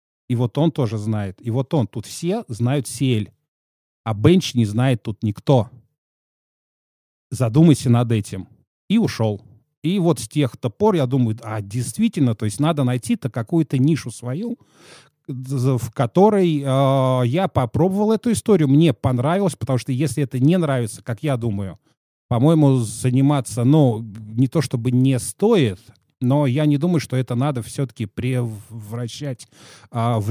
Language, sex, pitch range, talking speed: Russian, male, 115-145 Hz, 150 wpm